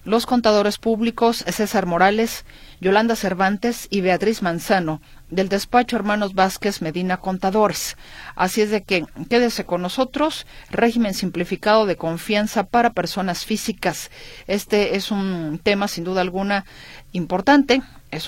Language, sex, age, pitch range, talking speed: Spanish, female, 40-59, 165-205 Hz, 130 wpm